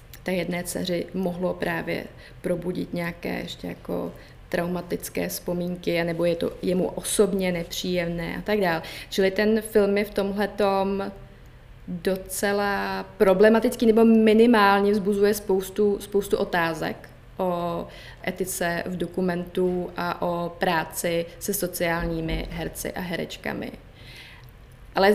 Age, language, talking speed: 20-39, Czech, 110 wpm